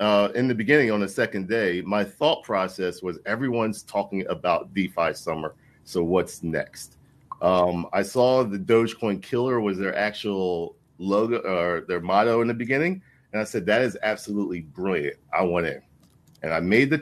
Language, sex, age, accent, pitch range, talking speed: English, male, 40-59, American, 95-120 Hz, 175 wpm